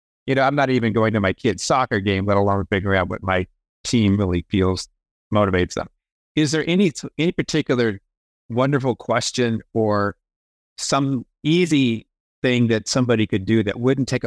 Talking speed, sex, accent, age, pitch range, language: 170 wpm, male, American, 50-69, 100-135 Hz, English